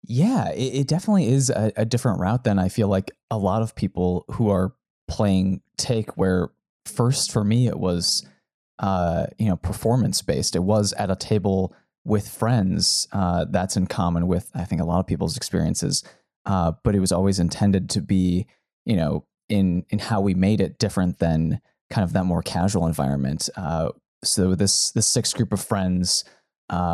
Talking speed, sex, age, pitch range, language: 185 wpm, male, 20-39, 90-105 Hz, English